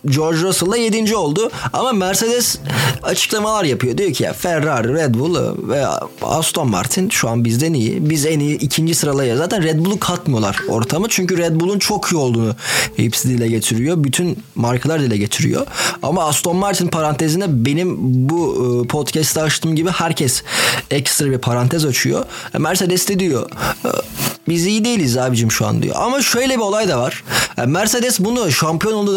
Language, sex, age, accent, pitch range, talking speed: Turkish, male, 30-49, native, 135-180 Hz, 160 wpm